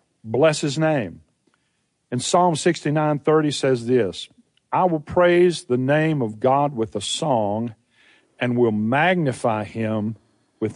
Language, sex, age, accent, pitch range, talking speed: English, male, 50-69, American, 120-155 Hz, 130 wpm